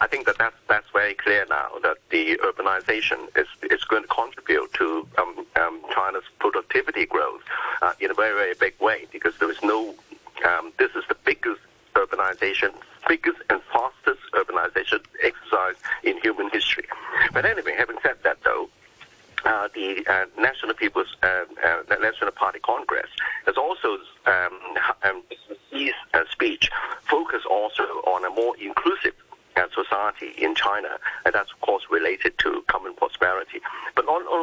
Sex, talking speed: male, 155 wpm